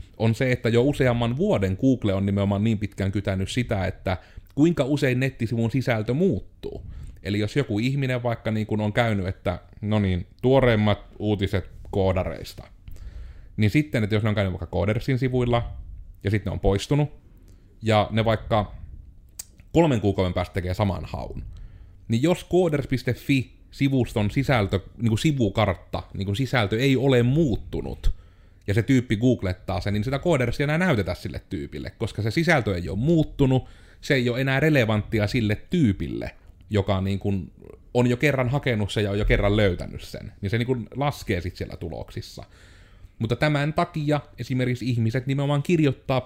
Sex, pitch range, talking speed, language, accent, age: male, 95-125 Hz, 160 wpm, Finnish, native, 30-49